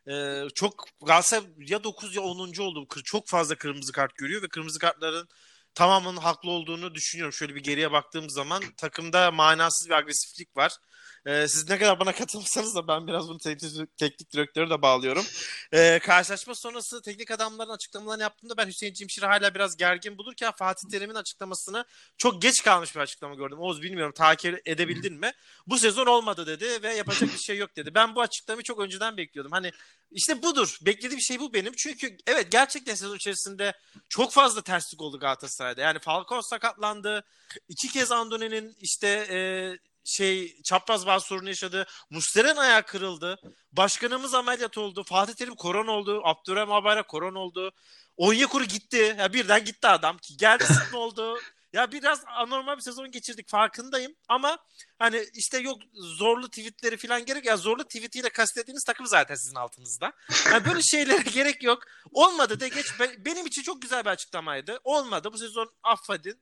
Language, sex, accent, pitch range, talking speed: Turkish, male, native, 170-235 Hz, 165 wpm